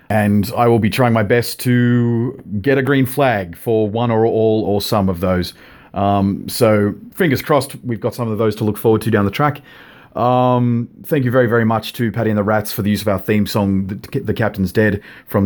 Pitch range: 100-120 Hz